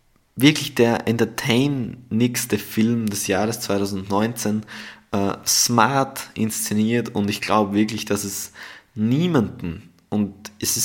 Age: 20-39